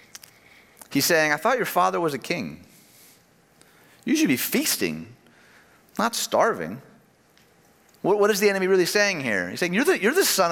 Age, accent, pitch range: 30-49, American, 140-195 Hz